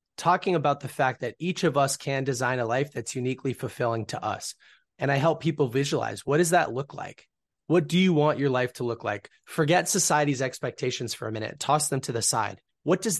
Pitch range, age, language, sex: 120-150 Hz, 20-39, English, male